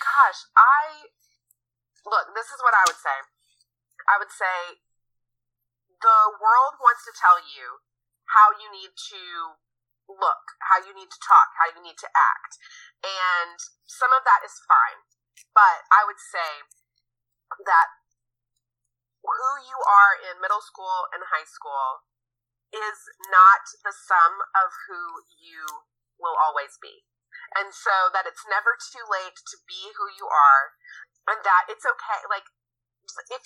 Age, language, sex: 30-49, English, female